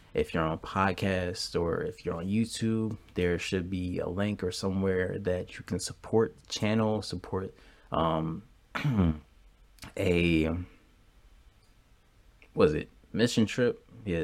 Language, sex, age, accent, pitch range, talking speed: English, male, 20-39, American, 85-100 Hz, 130 wpm